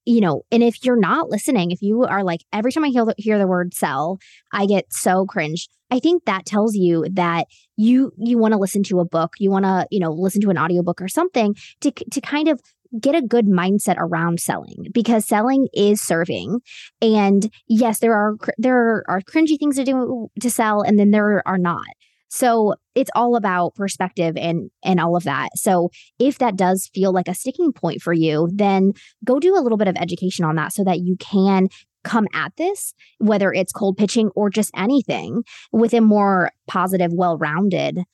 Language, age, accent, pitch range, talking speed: English, 20-39, American, 180-235 Hz, 205 wpm